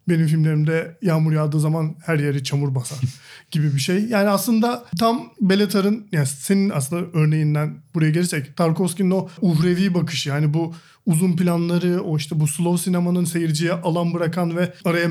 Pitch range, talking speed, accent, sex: 160-190 Hz, 160 wpm, native, male